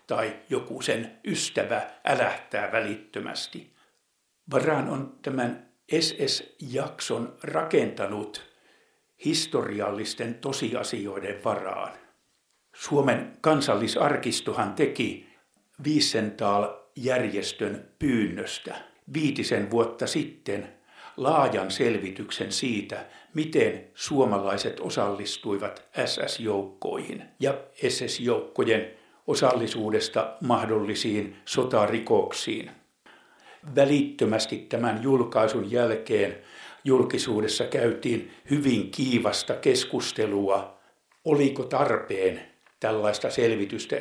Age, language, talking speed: 60-79, Finnish, 65 wpm